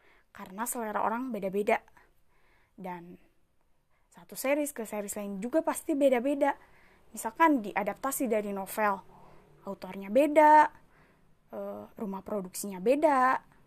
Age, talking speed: 20-39, 95 wpm